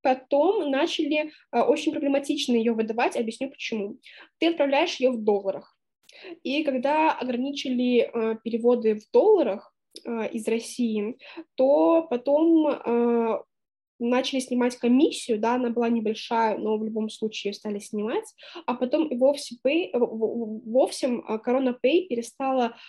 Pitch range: 230-280 Hz